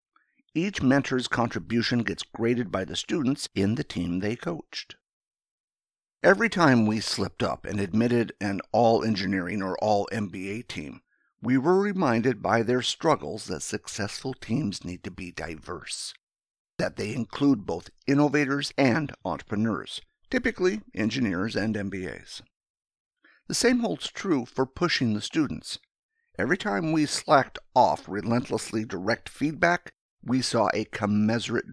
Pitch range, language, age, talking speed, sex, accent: 105-155 Hz, English, 50-69, 130 wpm, male, American